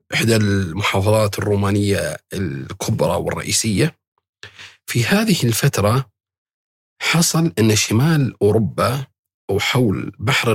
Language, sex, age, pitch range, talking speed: Arabic, male, 40-59, 100-125 Hz, 80 wpm